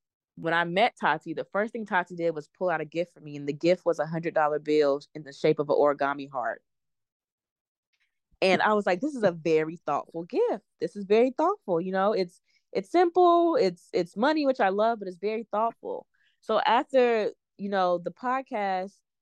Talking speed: 205 wpm